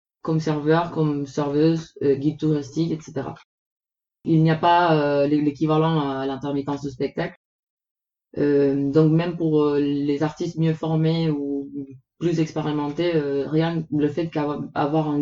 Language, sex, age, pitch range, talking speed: French, female, 20-39, 145-160 Hz, 140 wpm